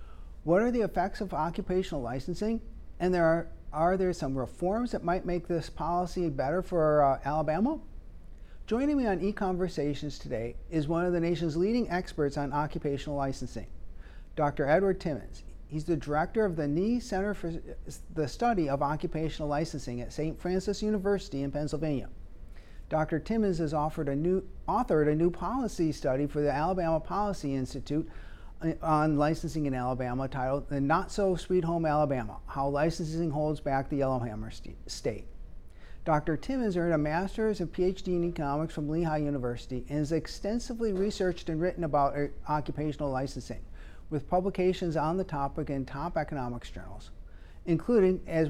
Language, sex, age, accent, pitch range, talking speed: English, male, 50-69, American, 140-180 Hz, 155 wpm